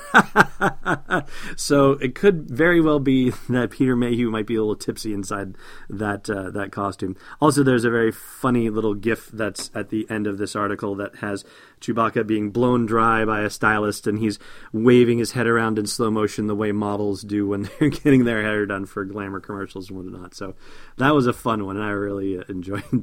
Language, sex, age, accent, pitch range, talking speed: English, male, 30-49, American, 110-145 Hz, 200 wpm